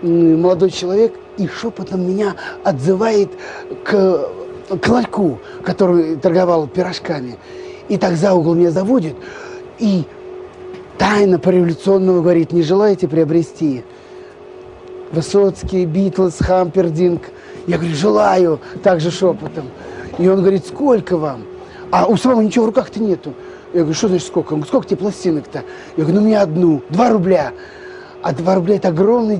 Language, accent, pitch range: Russian, native, 175-240 Hz